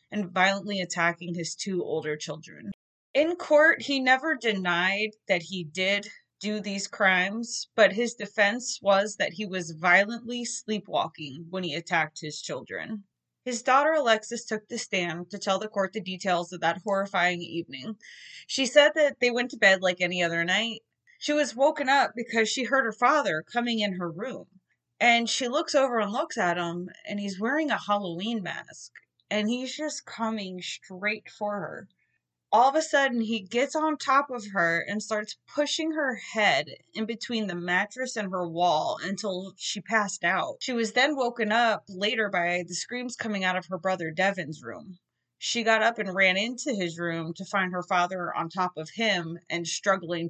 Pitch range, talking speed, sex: 180-235 Hz, 185 wpm, female